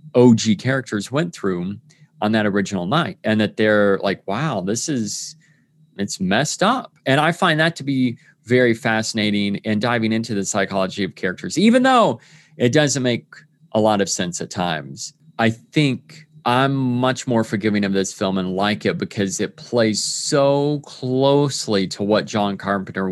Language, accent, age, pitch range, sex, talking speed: English, American, 30-49, 105-155 Hz, male, 170 wpm